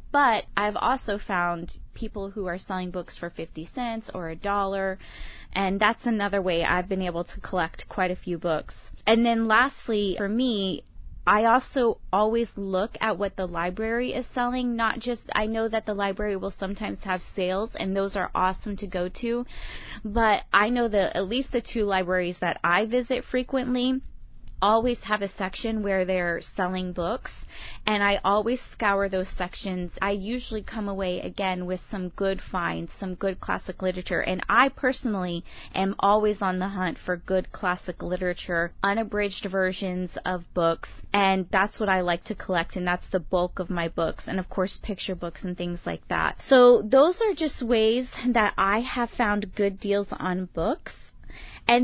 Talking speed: 180 wpm